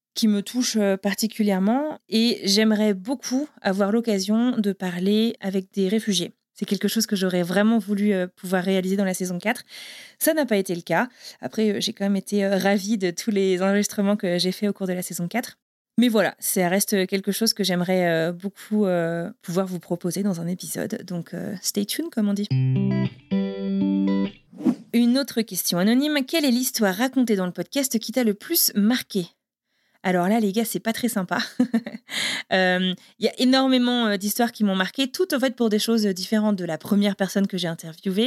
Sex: female